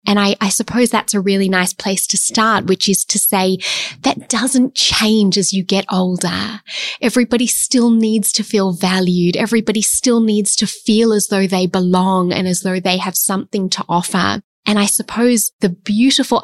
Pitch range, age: 185-215 Hz, 20-39